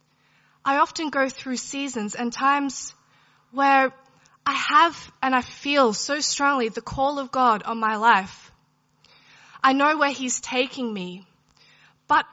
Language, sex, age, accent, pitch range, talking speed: English, female, 20-39, Australian, 235-285 Hz, 140 wpm